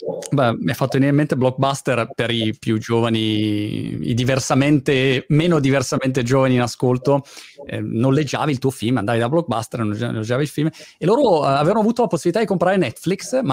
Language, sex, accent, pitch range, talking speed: Italian, male, native, 120-155 Hz, 185 wpm